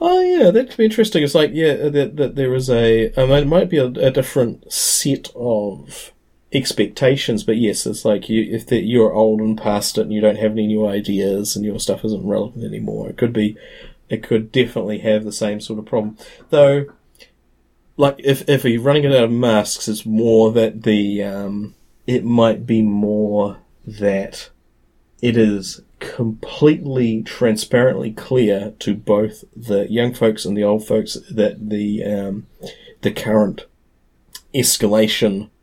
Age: 30-49